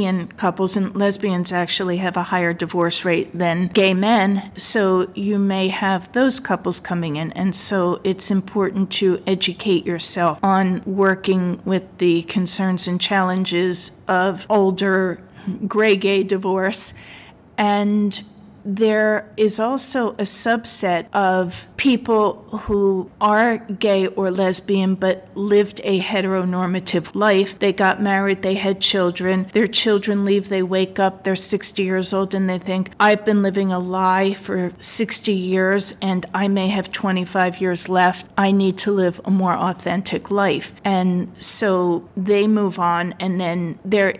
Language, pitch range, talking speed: English, 180-200 Hz, 145 wpm